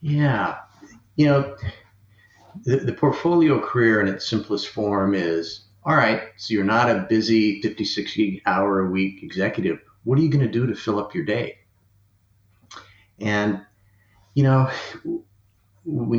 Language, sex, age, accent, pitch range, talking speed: English, male, 50-69, American, 100-115 Hz, 150 wpm